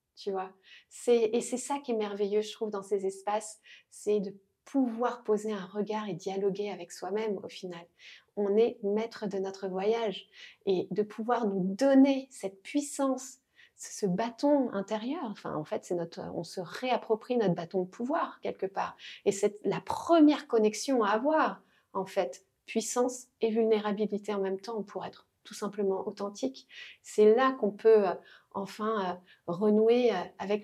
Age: 40-59